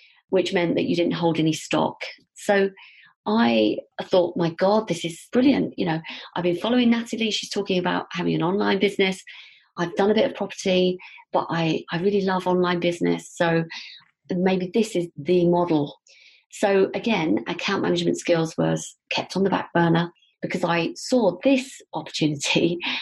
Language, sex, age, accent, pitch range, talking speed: English, female, 40-59, British, 165-200 Hz, 165 wpm